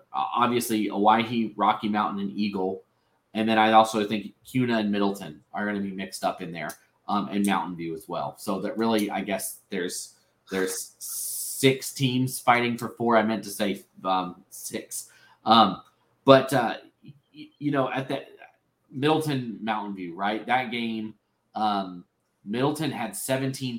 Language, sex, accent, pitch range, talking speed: English, male, American, 105-120 Hz, 160 wpm